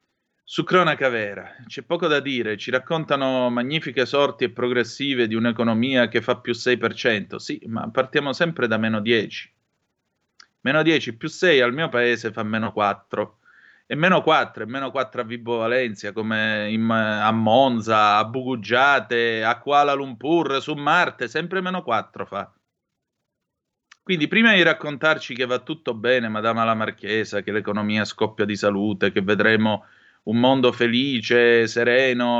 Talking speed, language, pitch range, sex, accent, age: 150 wpm, Italian, 110-140 Hz, male, native, 30-49